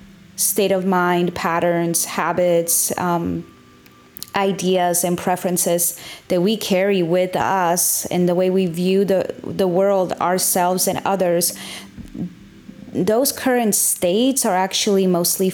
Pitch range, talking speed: 175-195 Hz, 120 wpm